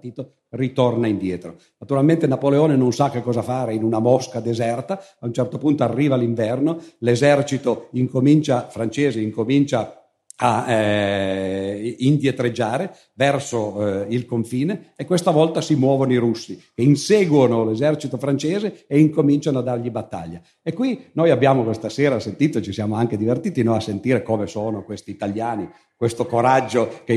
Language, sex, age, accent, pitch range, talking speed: Italian, male, 50-69, native, 115-145 Hz, 150 wpm